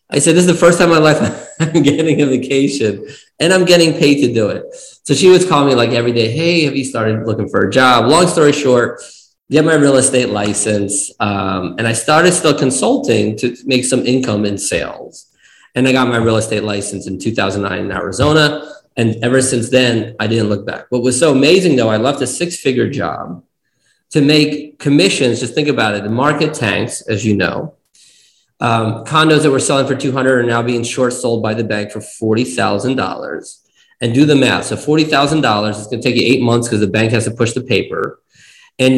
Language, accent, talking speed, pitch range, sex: English, American, 210 wpm, 110-145 Hz, male